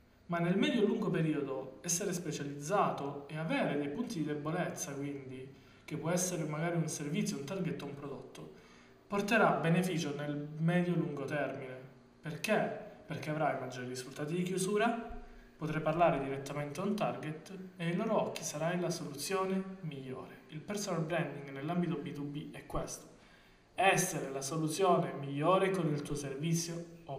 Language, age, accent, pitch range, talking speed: Italian, 20-39, native, 140-180 Hz, 145 wpm